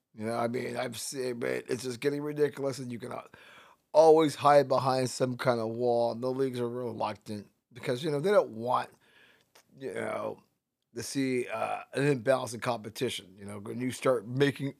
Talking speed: 190 wpm